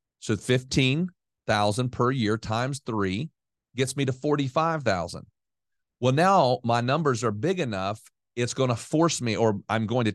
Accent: American